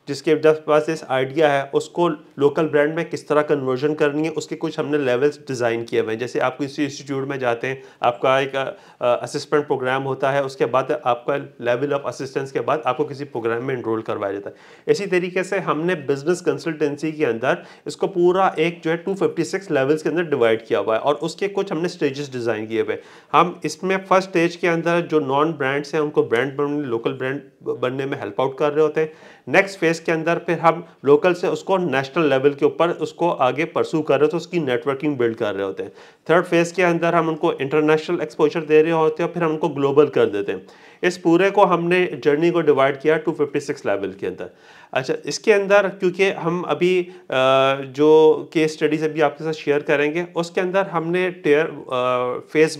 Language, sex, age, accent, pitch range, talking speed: Hindi, male, 30-49, native, 140-170 Hz, 205 wpm